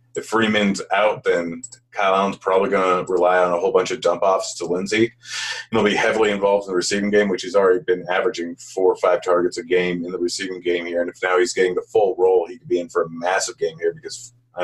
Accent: American